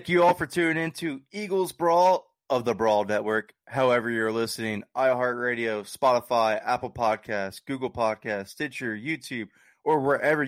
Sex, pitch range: male, 110-135 Hz